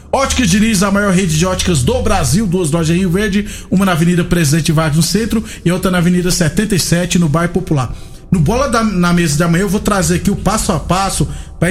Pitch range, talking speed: 165-200 Hz, 225 wpm